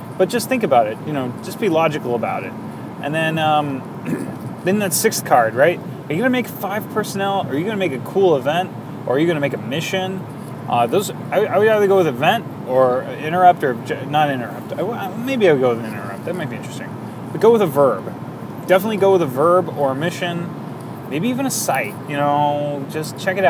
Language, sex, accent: English, male, American